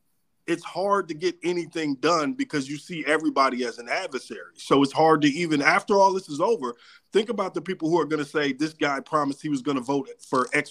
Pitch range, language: 150-220 Hz, English